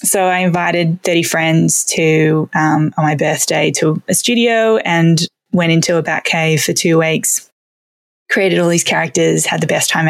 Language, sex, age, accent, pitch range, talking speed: English, female, 20-39, Australian, 155-170 Hz, 180 wpm